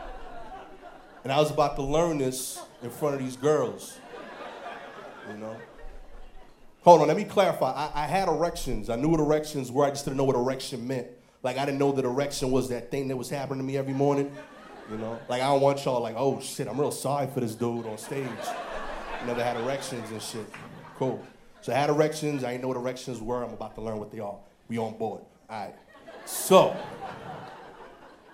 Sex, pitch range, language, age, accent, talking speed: male, 125-160 Hz, English, 30-49, American, 210 wpm